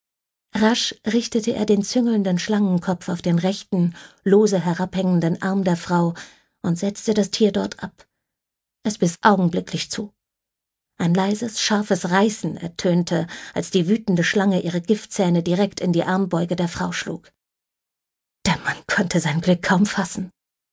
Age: 50-69